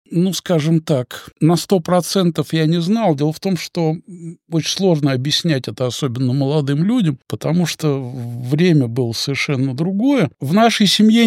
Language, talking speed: Russian, 155 wpm